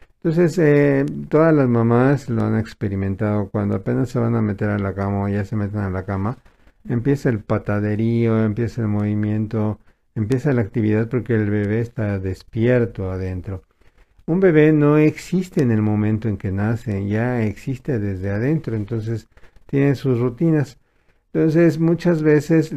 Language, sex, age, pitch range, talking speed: Spanish, male, 50-69, 105-125 Hz, 160 wpm